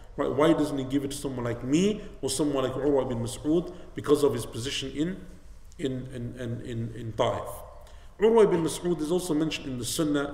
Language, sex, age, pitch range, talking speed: English, male, 50-69, 125-165 Hz, 210 wpm